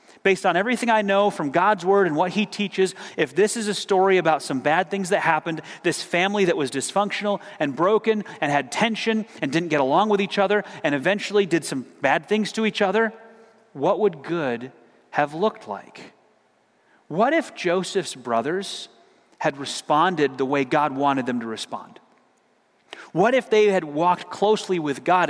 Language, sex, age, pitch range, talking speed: English, male, 30-49, 155-205 Hz, 180 wpm